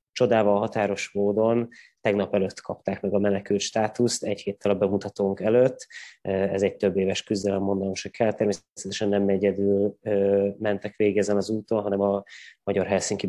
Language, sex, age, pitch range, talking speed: Hungarian, male, 20-39, 100-110 Hz, 155 wpm